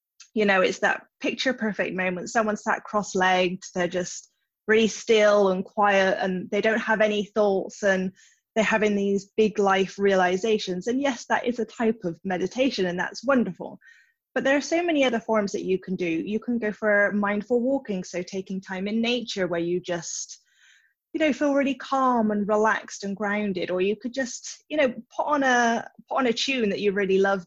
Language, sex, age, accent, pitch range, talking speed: English, female, 20-39, British, 190-235 Hz, 200 wpm